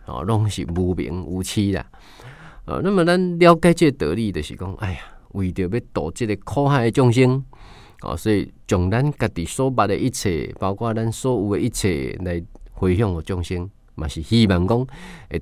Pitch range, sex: 90-115 Hz, male